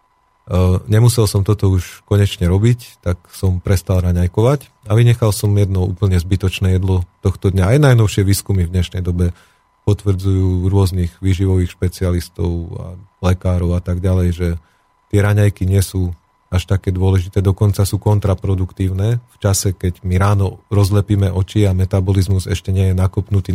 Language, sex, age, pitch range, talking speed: Slovak, male, 40-59, 95-105 Hz, 150 wpm